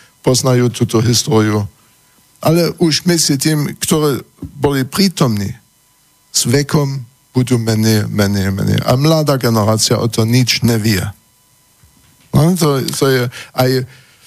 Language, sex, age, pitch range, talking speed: Slovak, male, 60-79, 115-135 Hz, 120 wpm